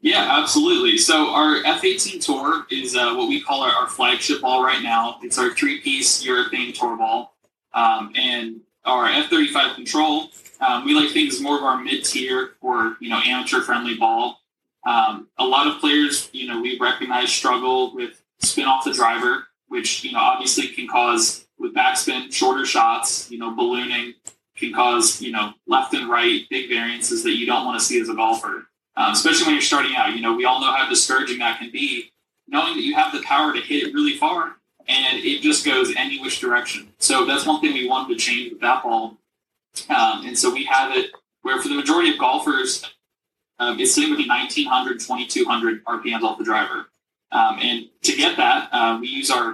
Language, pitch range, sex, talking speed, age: English, 295-380 Hz, male, 195 wpm, 20-39